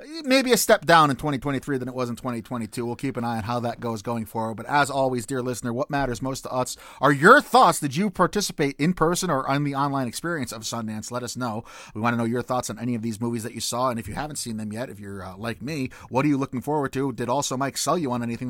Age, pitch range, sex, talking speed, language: 30-49, 115-135 Hz, male, 285 wpm, English